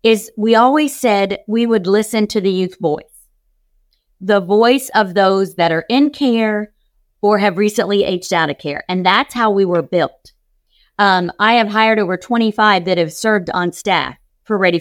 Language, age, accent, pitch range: English, 50-69, American, 185-235 Hz